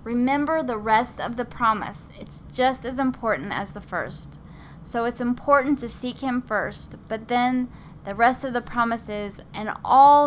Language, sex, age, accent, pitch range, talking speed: English, female, 10-29, American, 215-260 Hz, 170 wpm